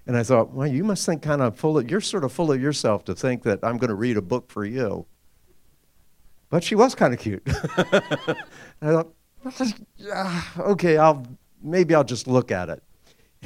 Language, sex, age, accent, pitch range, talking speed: English, male, 50-69, American, 115-155 Hz, 205 wpm